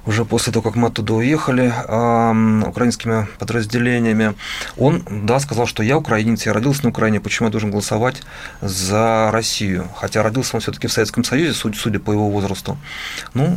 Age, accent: 30-49, native